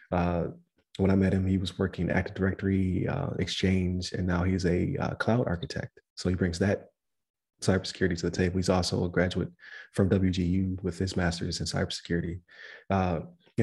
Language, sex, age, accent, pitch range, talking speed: English, male, 30-49, American, 90-100 Hz, 170 wpm